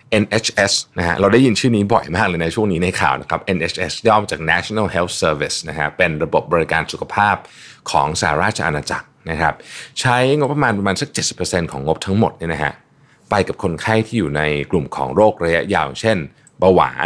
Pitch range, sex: 90-125 Hz, male